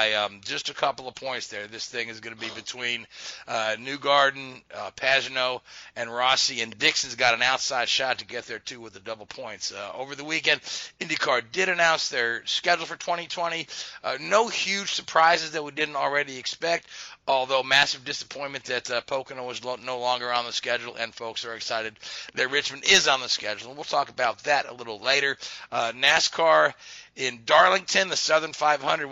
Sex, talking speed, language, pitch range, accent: male, 190 wpm, English, 120-145 Hz, American